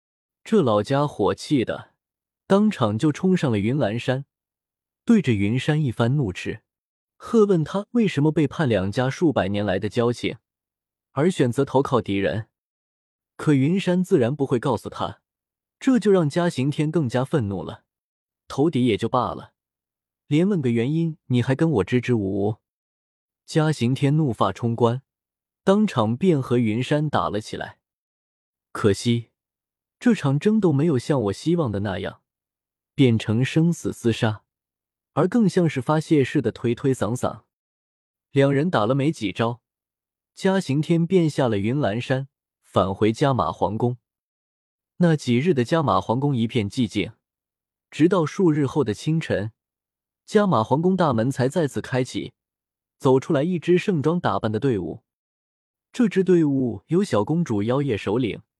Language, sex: Chinese, male